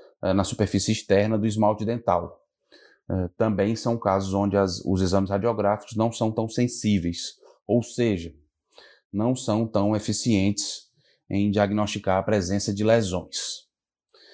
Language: Portuguese